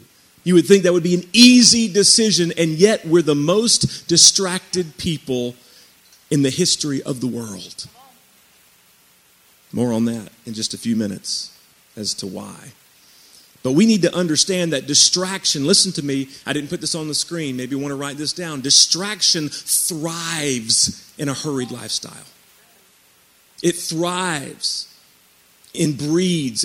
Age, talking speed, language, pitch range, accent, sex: 40-59, 150 wpm, English, 125-180 Hz, American, male